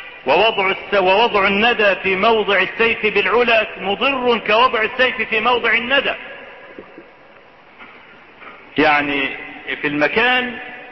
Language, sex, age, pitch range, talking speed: Arabic, male, 50-69, 190-240 Hz, 80 wpm